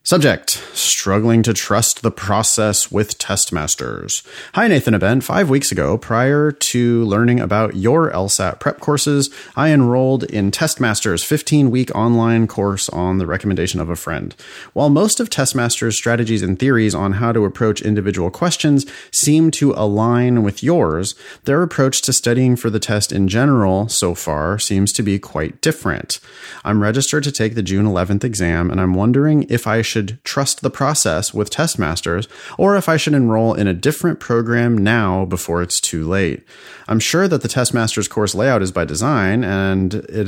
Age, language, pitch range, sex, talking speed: 30-49, English, 100-135 Hz, male, 170 wpm